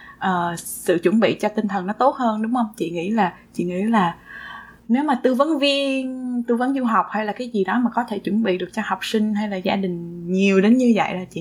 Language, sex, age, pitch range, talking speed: Vietnamese, female, 20-39, 190-245 Hz, 265 wpm